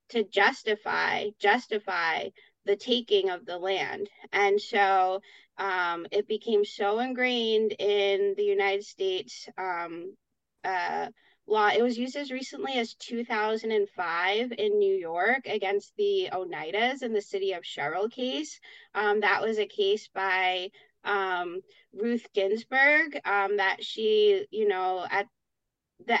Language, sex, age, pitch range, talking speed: English, female, 20-39, 195-245 Hz, 130 wpm